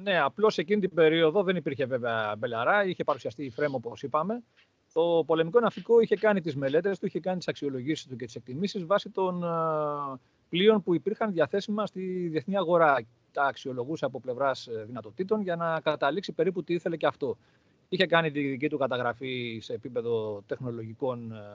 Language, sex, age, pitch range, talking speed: Greek, male, 40-59, 125-180 Hz, 170 wpm